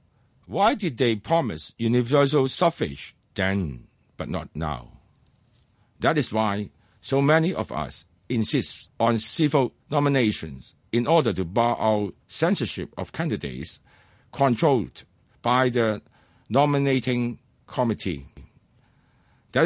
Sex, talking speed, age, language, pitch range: male, 105 wpm, 60-79, English, 100-130 Hz